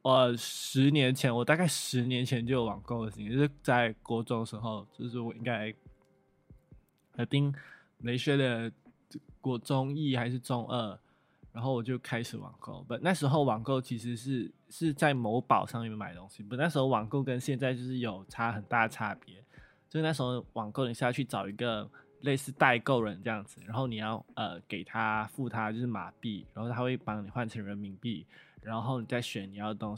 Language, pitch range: Chinese, 110-130 Hz